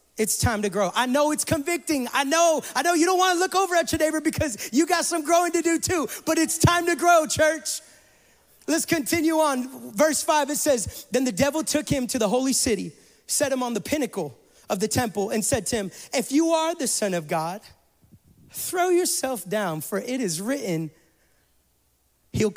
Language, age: English, 30-49